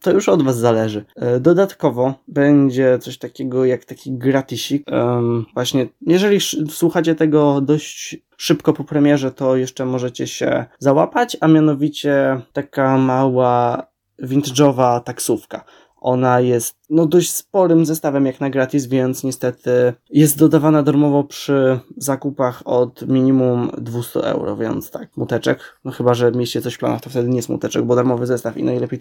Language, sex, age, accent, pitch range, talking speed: Polish, male, 20-39, native, 125-145 Hz, 145 wpm